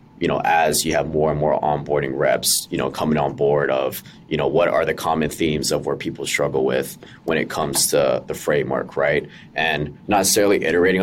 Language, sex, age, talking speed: English, male, 20-39, 210 wpm